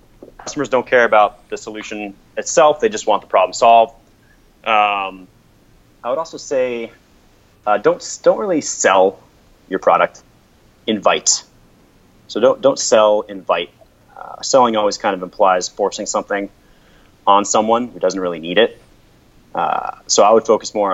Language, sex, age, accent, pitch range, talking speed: English, male, 30-49, American, 95-120 Hz, 150 wpm